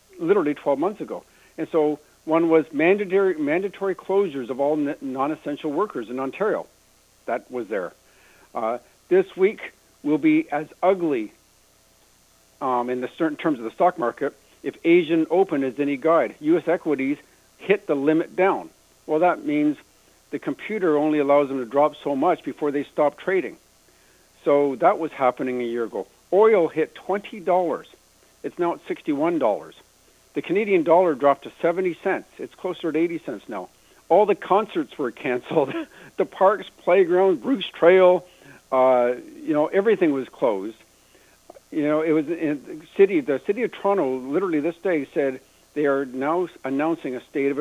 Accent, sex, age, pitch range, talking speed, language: American, male, 60-79, 140-195 Hz, 165 wpm, English